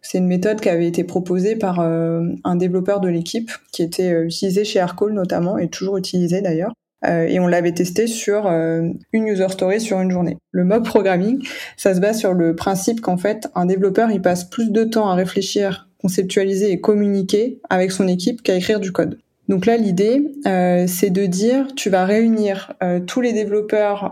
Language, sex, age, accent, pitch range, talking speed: French, female, 20-39, French, 180-210 Hz, 190 wpm